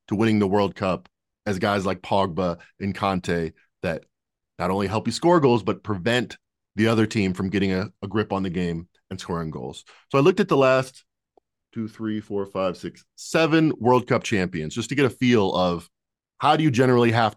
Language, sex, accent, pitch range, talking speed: English, male, American, 95-120 Hz, 205 wpm